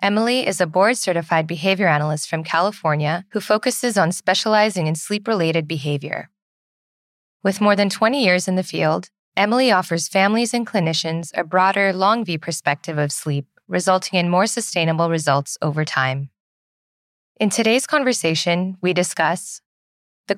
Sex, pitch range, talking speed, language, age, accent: female, 160-205 Hz, 140 wpm, English, 20-39, American